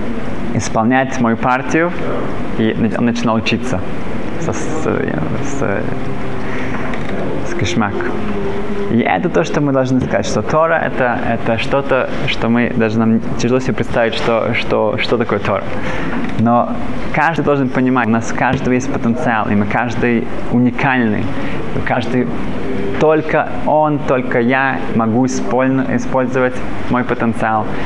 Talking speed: 125 wpm